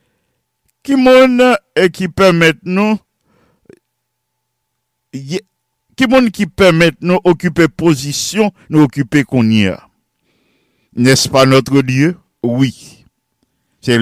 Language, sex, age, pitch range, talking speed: English, male, 60-79, 130-185 Hz, 95 wpm